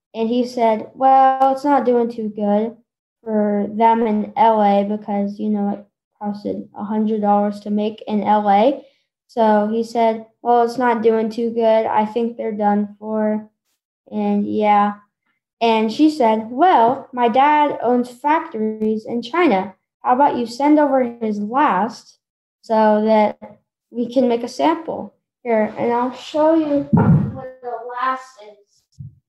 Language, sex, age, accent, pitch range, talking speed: English, female, 10-29, American, 215-260 Hz, 150 wpm